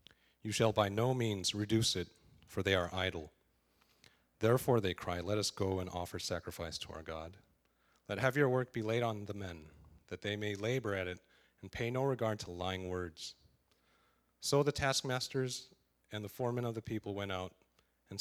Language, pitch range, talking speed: English, 95-120 Hz, 190 wpm